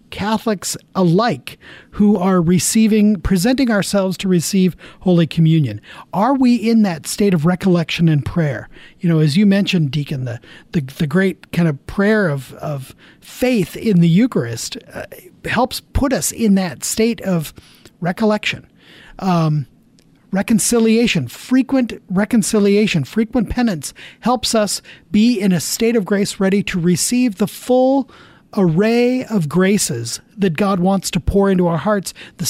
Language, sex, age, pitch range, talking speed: English, male, 40-59, 160-215 Hz, 145 wpm